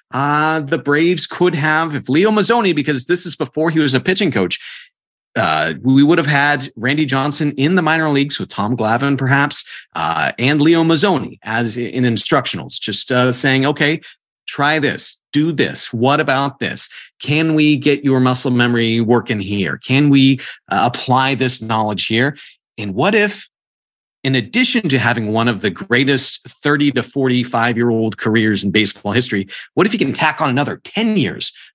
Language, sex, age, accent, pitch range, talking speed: English, male, 40-59, American, 125-165 Hz, 175 wpm